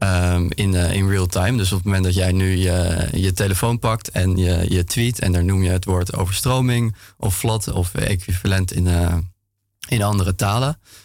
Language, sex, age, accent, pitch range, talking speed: Dutch, male, 20-39, Dutch, 90-105 Hz, 200 wpm